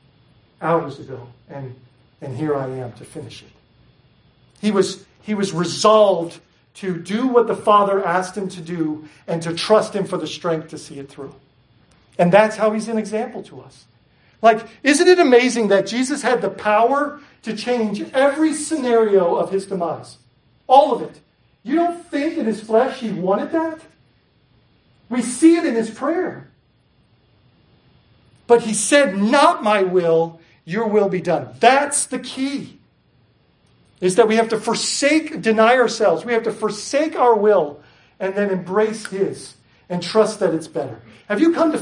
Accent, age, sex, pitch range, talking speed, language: American, 40-59, male, 170-250 Hz, 165 wpm, English